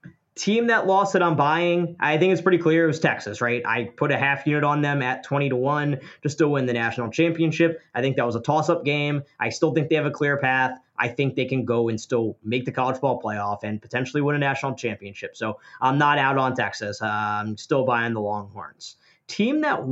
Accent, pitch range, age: American, 120-160 Hz, 20-39